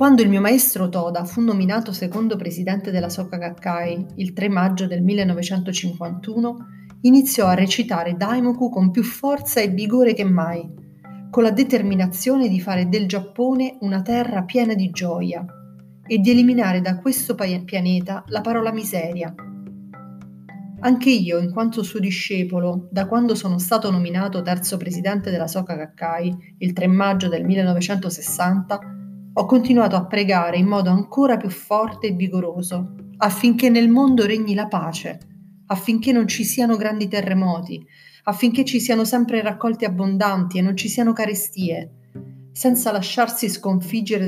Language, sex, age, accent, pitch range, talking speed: Italian, female, 30-49, native, 180-225 Hz, 145 wpm